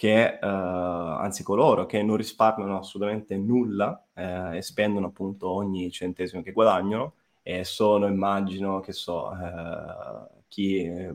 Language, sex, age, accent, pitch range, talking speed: Italian, male, 20-39, native, 90-105 Hz, 130 wpm